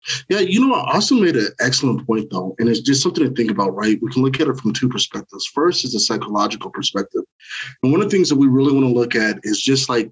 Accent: American